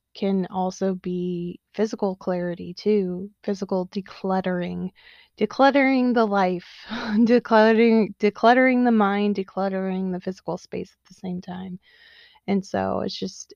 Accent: American